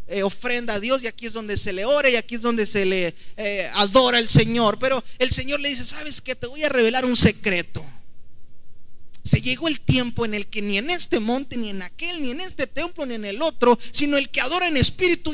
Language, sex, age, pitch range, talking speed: Spanish, male, 30-49, 220-275 Hz, 240 wpm